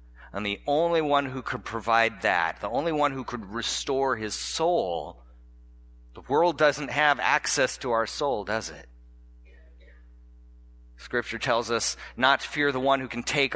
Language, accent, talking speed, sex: English, American, 165 wpm, male